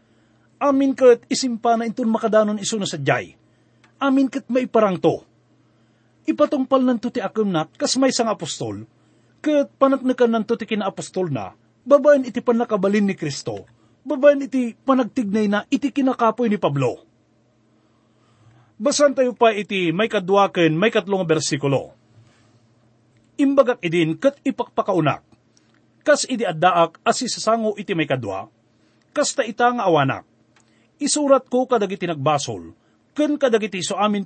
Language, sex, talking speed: English, male, 130 wpm